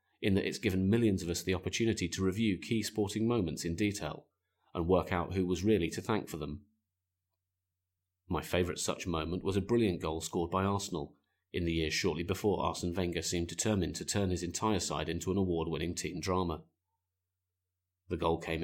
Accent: British